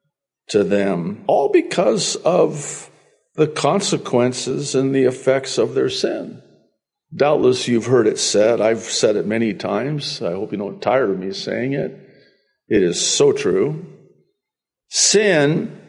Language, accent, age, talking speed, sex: English, American, 50-69, 140 wpm, male